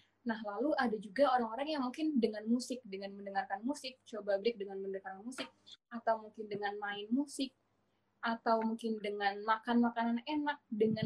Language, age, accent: Indonesian, 20-39, native